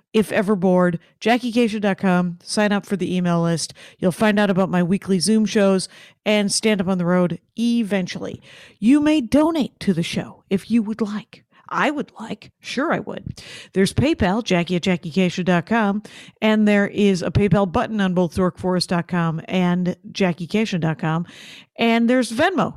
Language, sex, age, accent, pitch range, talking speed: English, female, 50-69, American, 185-220 Hz, 160 wpm